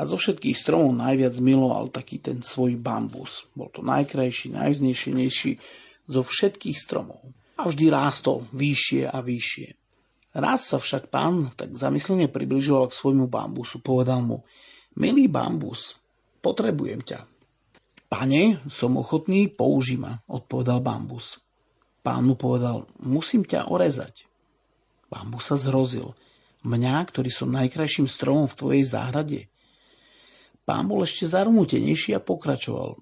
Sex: male